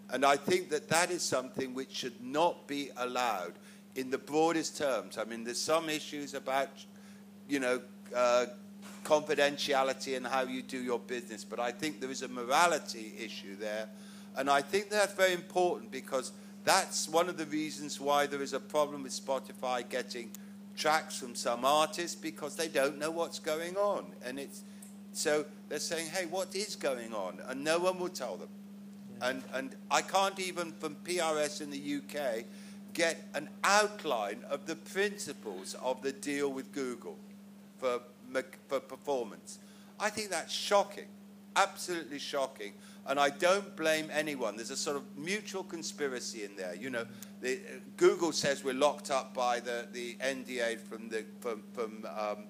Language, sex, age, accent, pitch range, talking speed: Dutch, male, 50-69, British, 135-200 Hz, 170 wpm